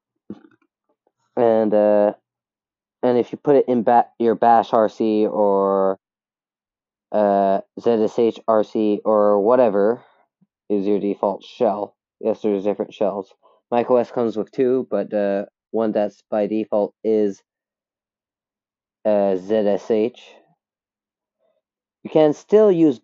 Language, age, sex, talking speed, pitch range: English, 20-39, male, 115 wpm, 105-120 Hz